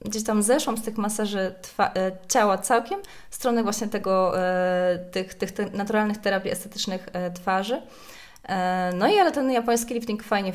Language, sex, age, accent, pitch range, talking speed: Polish, female, 20-39, native, 190-225 Hz, 175 wpm